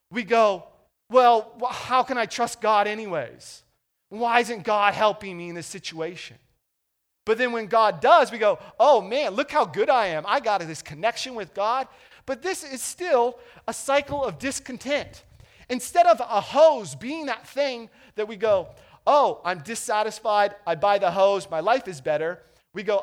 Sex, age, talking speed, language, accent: male, 30-49, 175 wpm, English, American